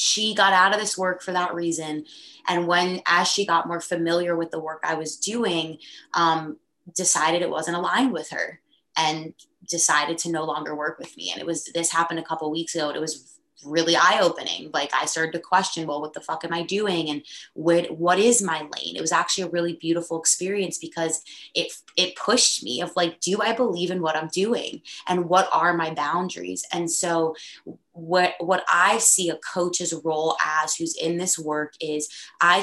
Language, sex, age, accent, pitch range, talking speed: English, female, 20-39, American, 160-180 Hz, 205 wpm